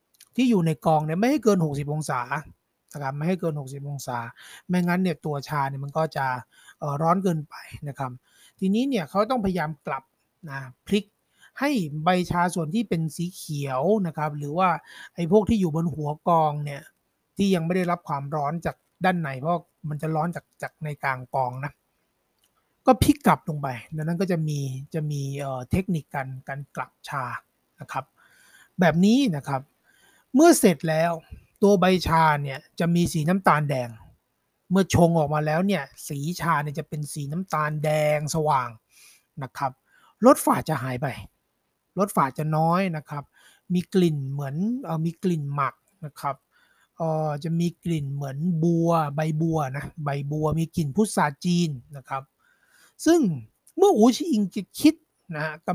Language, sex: Thai, male